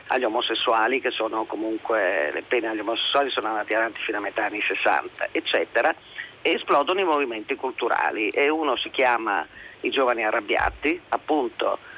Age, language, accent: 40-59, Italian, native